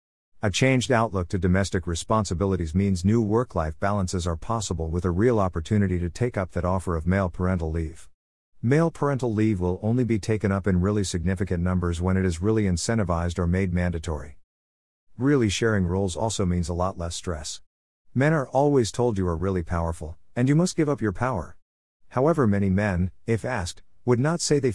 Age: 50-69